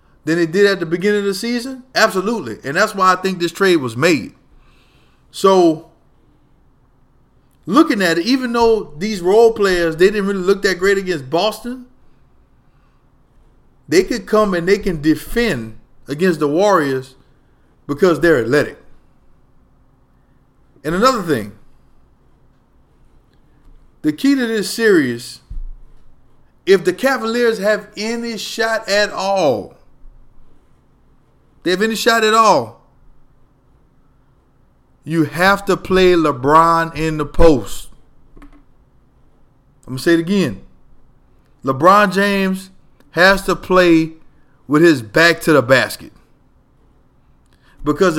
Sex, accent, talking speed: male, American, 120 wpm